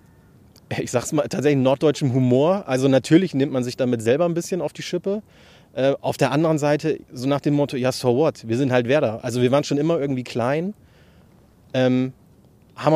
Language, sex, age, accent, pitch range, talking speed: German, male, 30-49, German, 115-135 Hz, 200 wpm